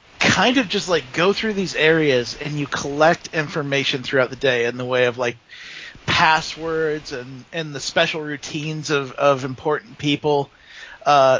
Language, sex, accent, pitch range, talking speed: English, male, American, 135-170 Hz, 165 wpm